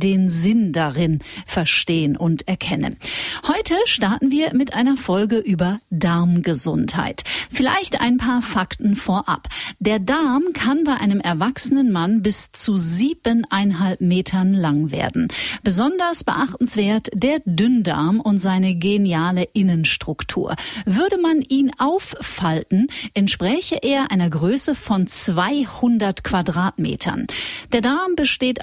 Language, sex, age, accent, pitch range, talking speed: German, female, 40-59, German, 175-255 Hz, 115 wpm